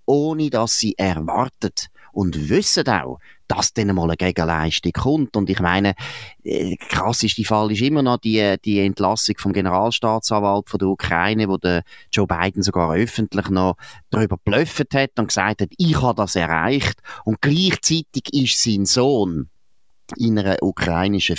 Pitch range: 95-120 Hz